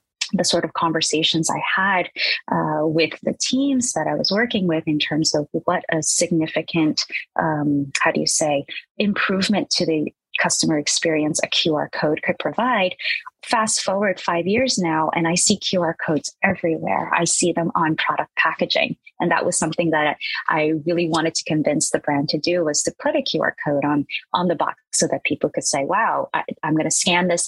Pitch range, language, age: 155-190 Hz, English, 30-49